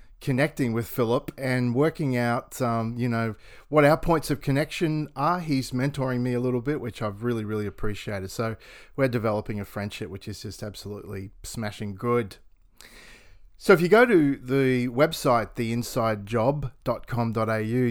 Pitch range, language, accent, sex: 110-135 Hz, English, Australian, male